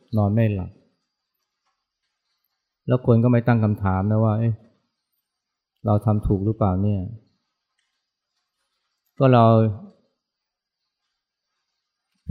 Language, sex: Thai, male